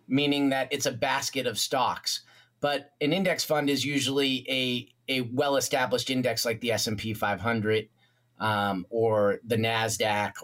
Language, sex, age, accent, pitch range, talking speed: English, male, 30-49, American, 115-135 Hz, 145 wpm